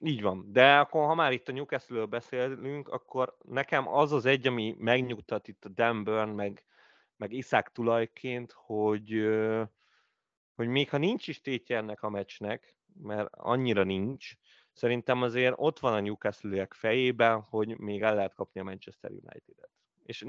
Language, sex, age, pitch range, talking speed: Hungarian, male, 30-49, 105-125 Hz, 155 wpm